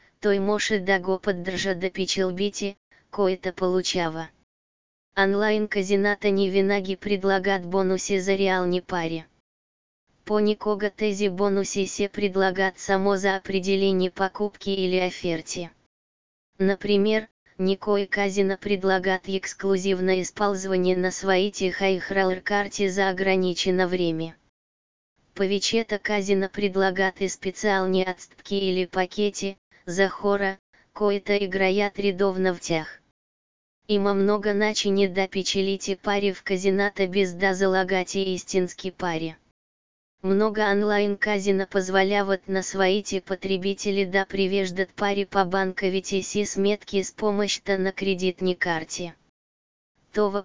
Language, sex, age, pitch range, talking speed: Bulgarian, female, 20-39, 185-200 Hz, 115 wpm